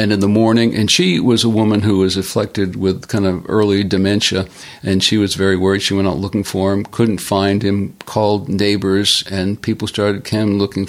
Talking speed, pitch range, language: 205 wpm, 95-110 Hz, English